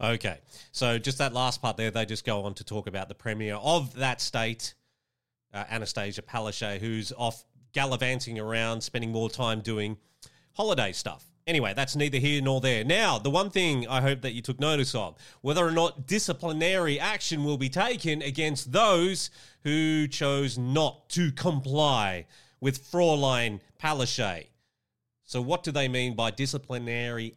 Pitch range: 120-165 Hz